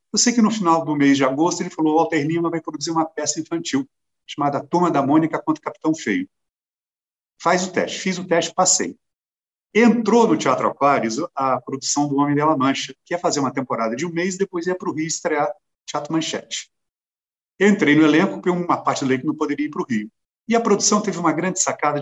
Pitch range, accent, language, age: 140-175 Hz, Brazilian, English, 50-69